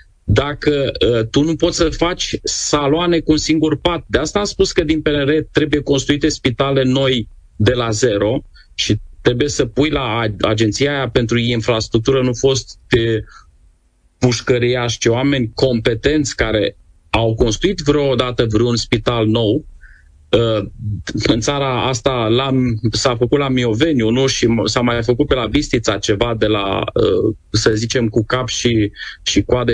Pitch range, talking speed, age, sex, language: 115-155 Hz, 155 wpm, 30-49, male, Romanian